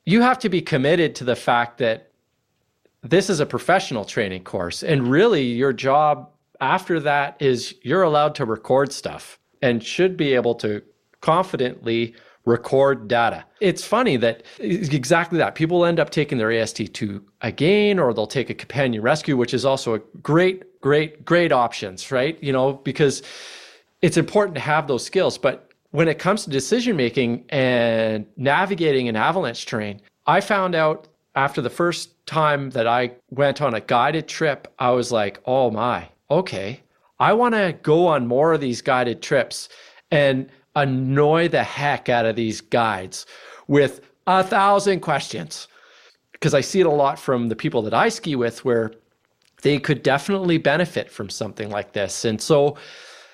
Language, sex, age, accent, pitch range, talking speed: English, male, 30-49, American, 120-165 Hz, 170 wpm